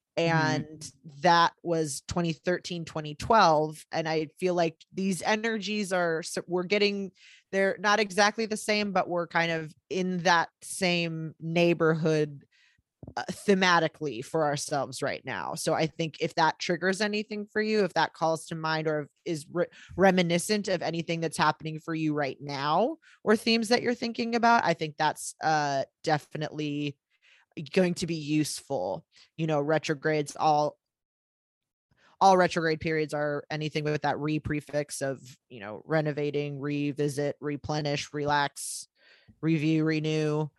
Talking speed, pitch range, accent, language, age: 140 wpm, 150-180 Hz, American, English, 20-39